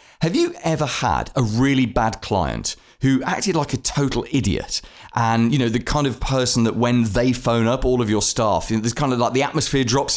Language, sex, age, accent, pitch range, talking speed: English, male, 30-49, British, 110-150 Hz, 230 wpm